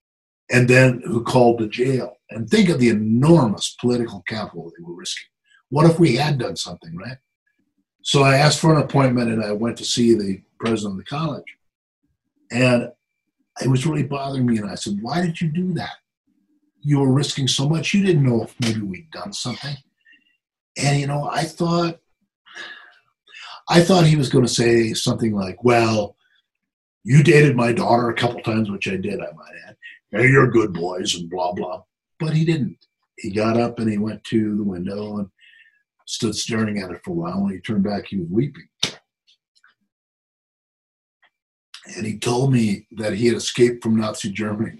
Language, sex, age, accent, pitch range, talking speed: English, male, 50-69, American, 110-150 Hz, 185 wpm